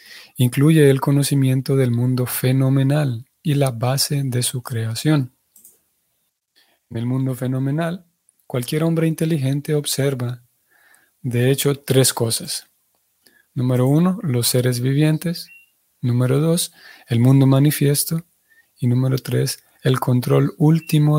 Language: Spanish